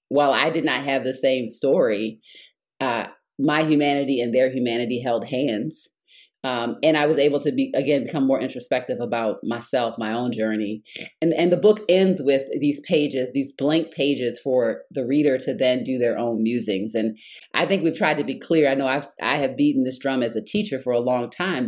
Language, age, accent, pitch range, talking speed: English, 30-49, American, 130-160 Hz, 210 wpm